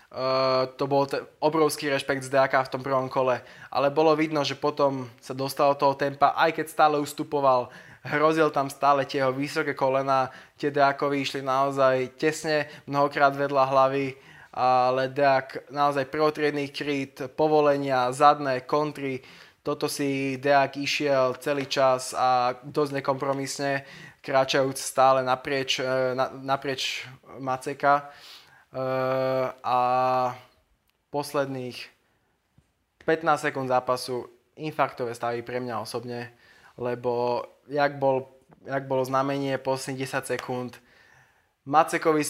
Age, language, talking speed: 20-39, Slovak, 120 wpm